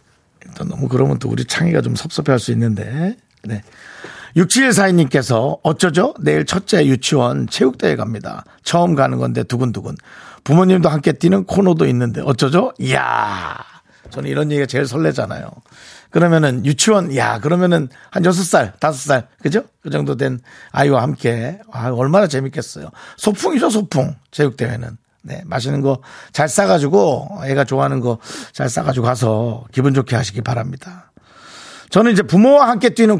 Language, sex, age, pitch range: Korean, male, 50-69, 125-180 Hz